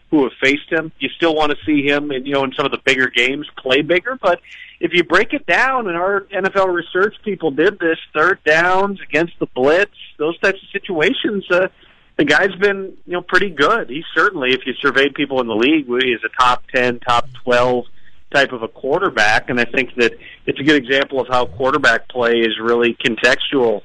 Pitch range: 130-170 Hz